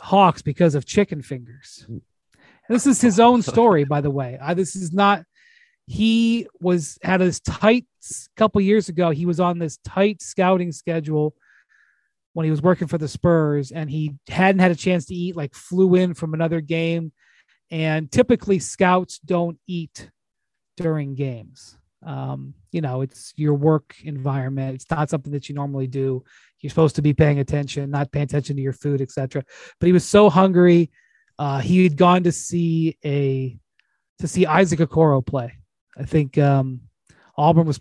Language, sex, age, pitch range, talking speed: English, male, 30-49, 140-175 Hz, 175 wpm